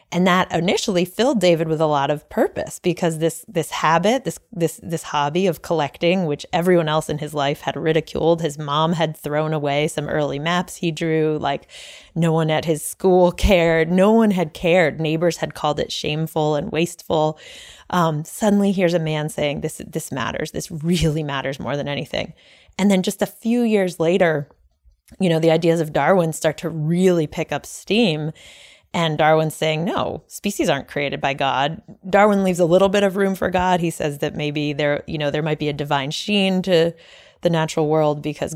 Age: 20-39